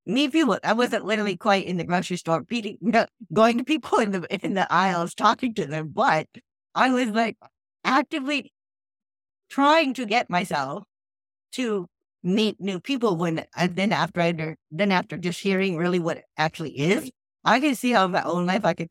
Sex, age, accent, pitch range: female, 50-69, American, 160-205 Hz